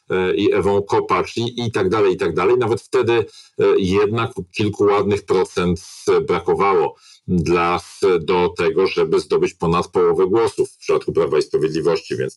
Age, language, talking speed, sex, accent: 50-69, Polish, 155 wpm, male, native